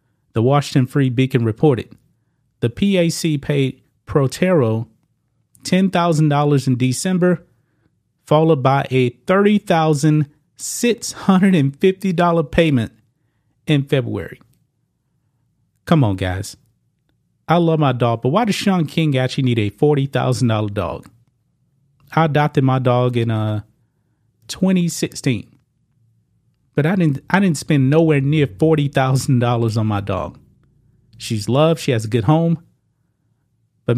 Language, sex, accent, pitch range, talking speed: English, male, American, 120-155 Hz, 130 wpm